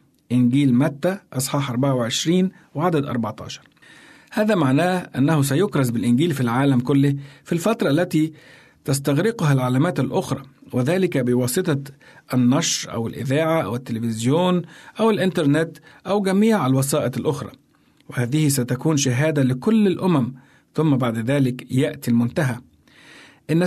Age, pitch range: 50-69, 130-165 Hz